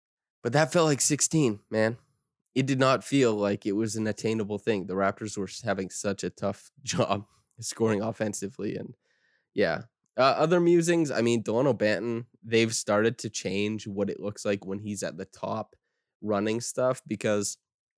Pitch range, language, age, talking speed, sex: 100-115 Hz, English, 20-39, 170 wpm, male